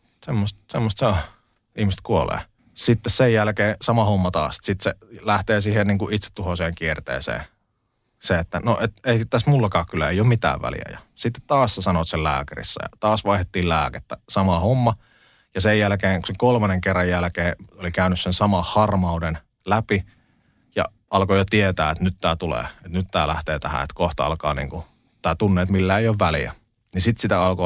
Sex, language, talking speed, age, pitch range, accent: male, Finnish, 180 wpm, 30-49, 85-110 Hz, native